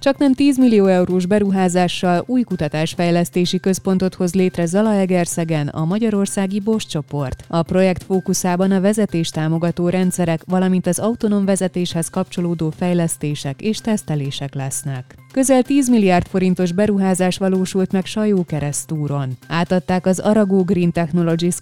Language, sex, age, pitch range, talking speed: Hungarian, female, 20-39, 160-200 Hz, 120 wpm